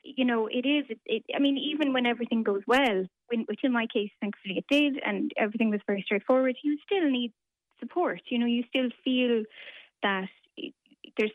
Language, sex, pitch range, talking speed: English, female, 210-255 Hz, 195 wpm